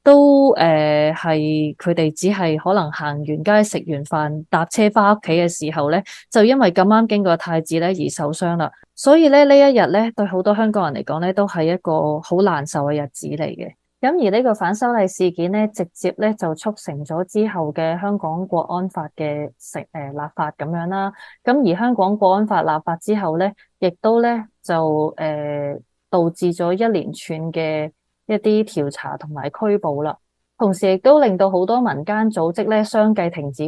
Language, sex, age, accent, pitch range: Chinese, female, 20-39, native, 160-215 Hz